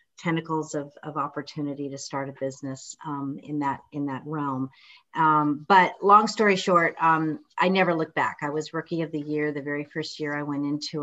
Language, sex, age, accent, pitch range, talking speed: English, female, 40-59, American, 150-180 Hz, 200 wpm